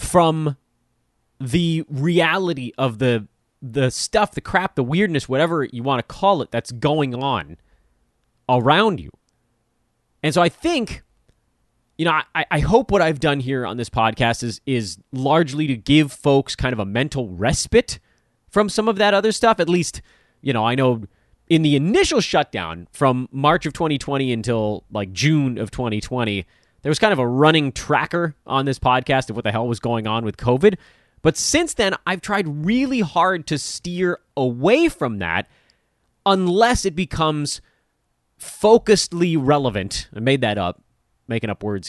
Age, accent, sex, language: 30-49, American, male, English